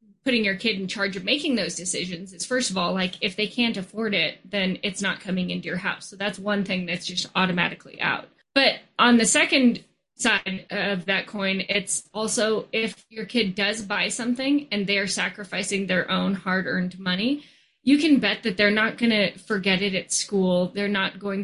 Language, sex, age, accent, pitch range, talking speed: English, female, 20-39, American, 185-225 Hz, 205 wpm